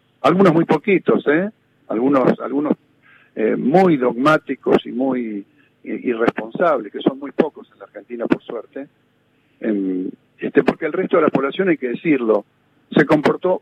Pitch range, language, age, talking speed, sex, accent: 140-205 Hz, Spanish, 50-69, 150 wpm, male, Argentinian